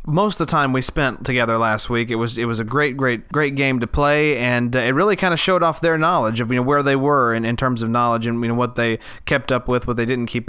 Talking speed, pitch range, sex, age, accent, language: 305 wpm, 120-155 Hz, male, 30-49, American, English